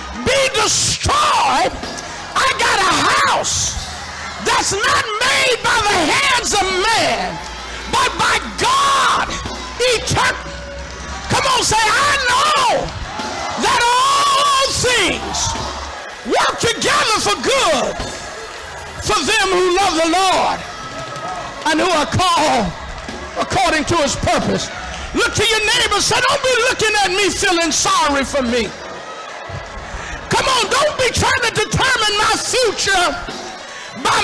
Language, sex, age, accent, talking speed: English, male, 50-69, American, 115 wpm